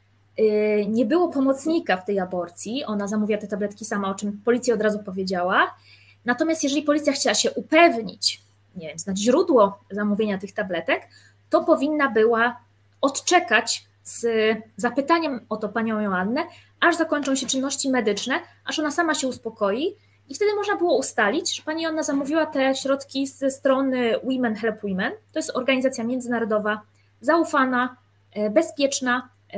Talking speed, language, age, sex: 145 wpm, Polish, 20-39, female